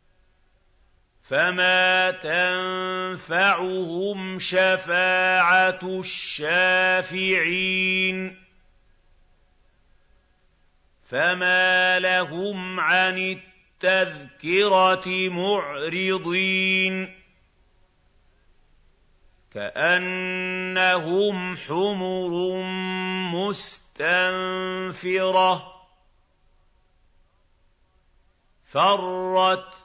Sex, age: male, 50-69